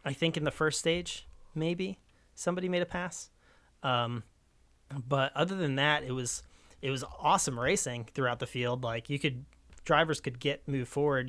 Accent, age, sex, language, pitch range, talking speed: American, 30-49, male, English, 125-150 Hz, 175 wpm